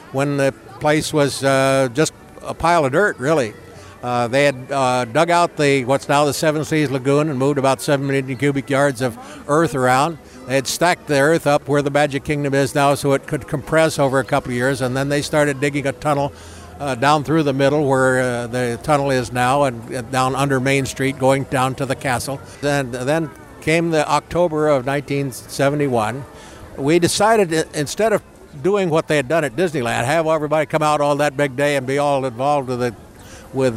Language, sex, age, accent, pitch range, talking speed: English, male, 60-79, American, 130-150 Hz, 205 wpm